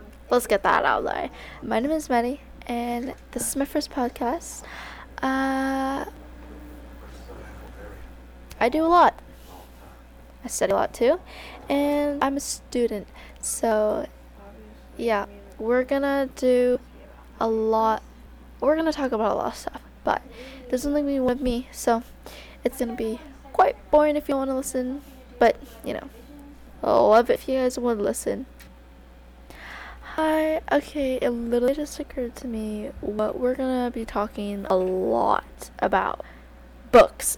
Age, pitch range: 10-29, 210-275 Hz